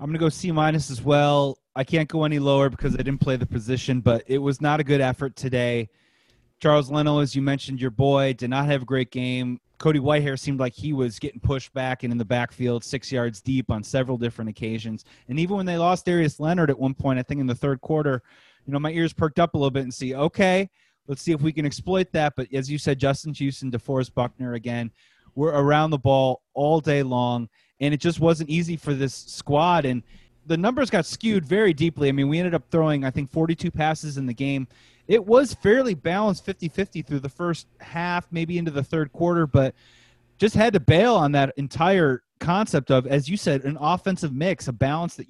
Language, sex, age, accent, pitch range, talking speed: English, male, 30-49, American, 130-165 Hz, 230 wpm